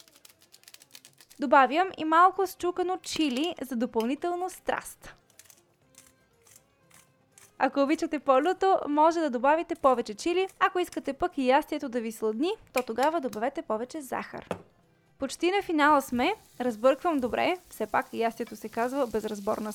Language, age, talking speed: Bulgarian, 20-39, 125 wpm